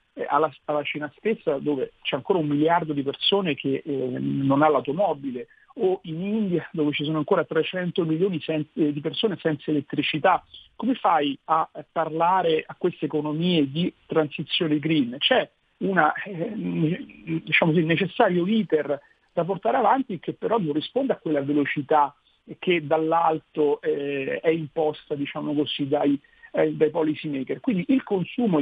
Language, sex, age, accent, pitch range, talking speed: Italian, male, 50-69, native, 145-190 Hz, 150 wpm